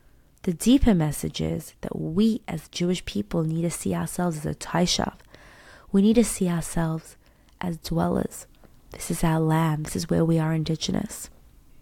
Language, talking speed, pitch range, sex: English, 170 wpm, 165-195 Hz, female